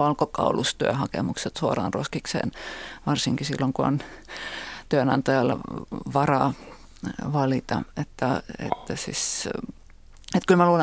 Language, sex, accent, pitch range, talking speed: Finnish, female, native, 140-175 Hz, 95 wpm